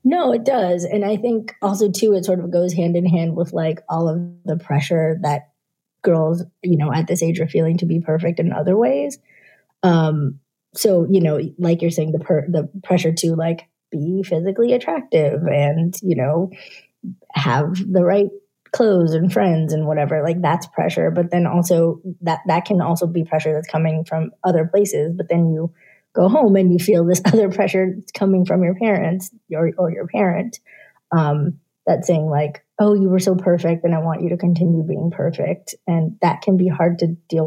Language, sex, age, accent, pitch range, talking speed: English, female, 20-39, American, 160-190 Hz, 195 wpm